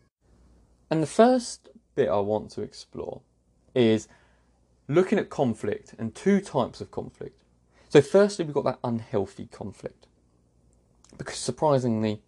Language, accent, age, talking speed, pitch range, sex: English, British, 20-39, 125 wpm, 95-125 Hz, male